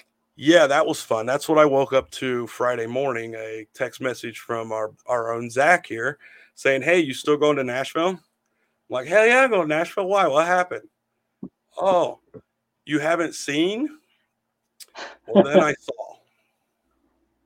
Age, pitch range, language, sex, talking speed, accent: 50-69, 120-165 Hz, English, male, 160 wpm, American